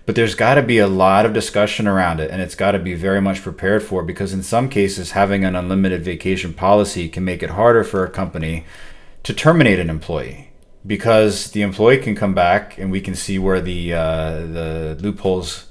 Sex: male